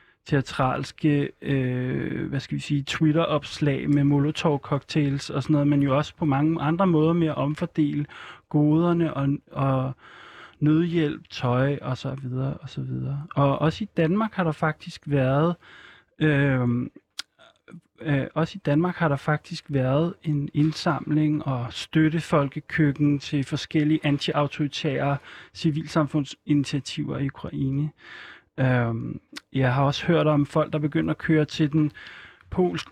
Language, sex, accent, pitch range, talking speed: Danish, male, native, 140-160 Hz, 130 wpm